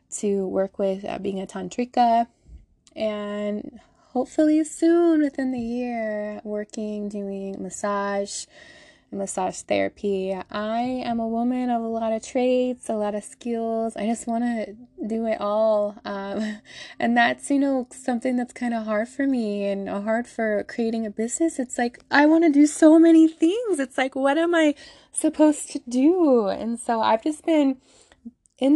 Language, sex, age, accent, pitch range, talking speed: English, female, 20-39, American, 205-255 Hz, 165 wpm